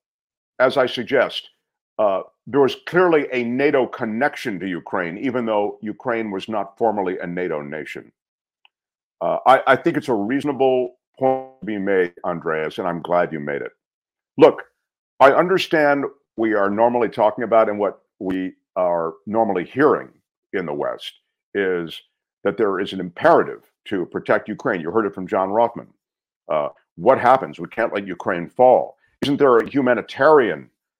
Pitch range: 105-145 Hz